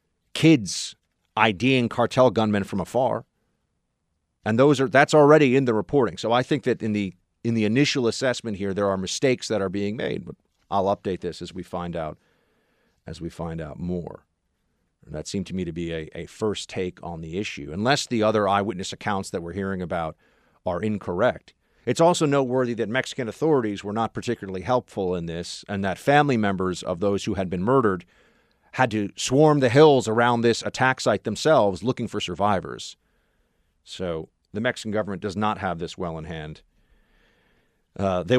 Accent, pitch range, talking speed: American, 90-120 Hz, 185 wpm